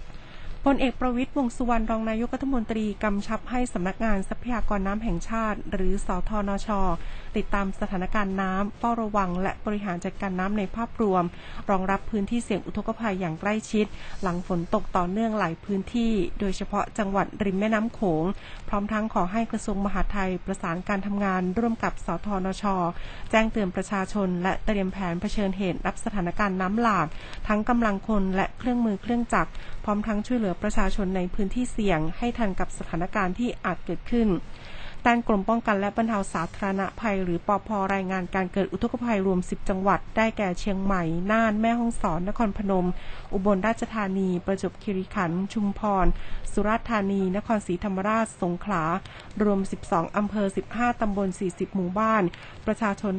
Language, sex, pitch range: Thai, female, 190-220 Hz